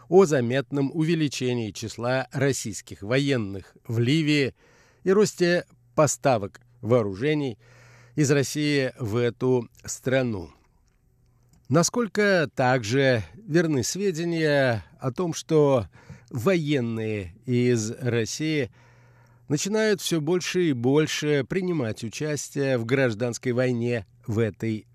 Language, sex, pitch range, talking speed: Russian, male, 120-150 Hz, 95 wpm